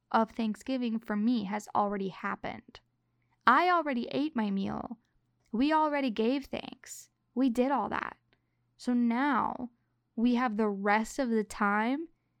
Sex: female